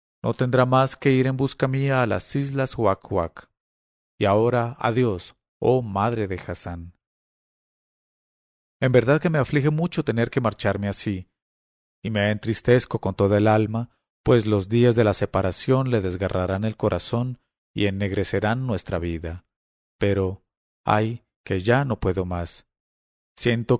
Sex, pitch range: male, 95-125 Hz